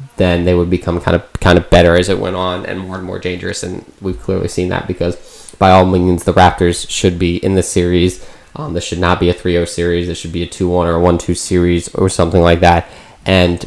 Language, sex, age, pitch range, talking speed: English, male, 20-39, 90-100 Hz, 245 wpm